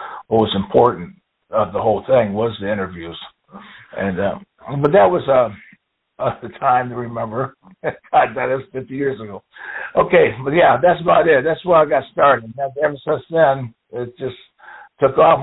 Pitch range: 115-145 Hz